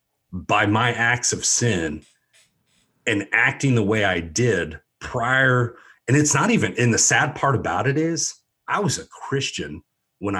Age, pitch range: 40-59, 105-145 Hz